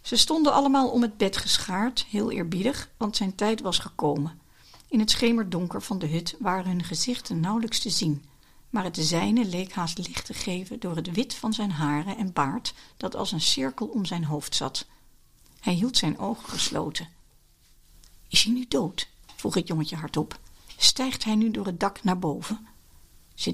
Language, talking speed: Dutch, 185 wpm